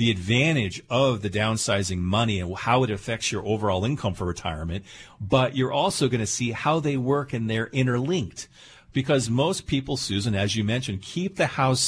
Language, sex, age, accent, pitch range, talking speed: English, male, 40-59, American, 100-145 Hz, 185 wpm